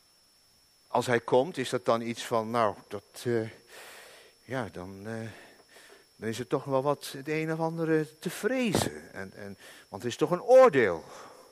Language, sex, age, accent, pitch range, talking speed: Dutch, male, 50-69, Dutch, 105-175 Hz, 175 wpm